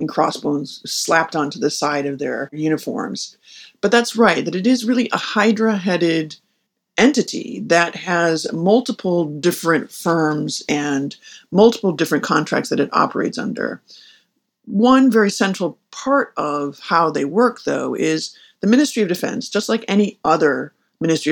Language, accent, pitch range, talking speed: English, American, 155-215 Hz, 145 wpm